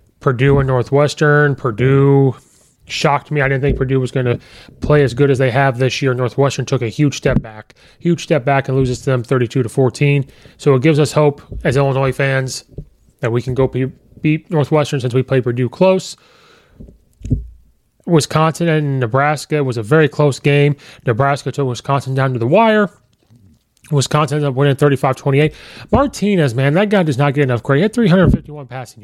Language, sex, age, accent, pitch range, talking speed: English, male, 30-49, American, 125-150 Hz, 185 wpm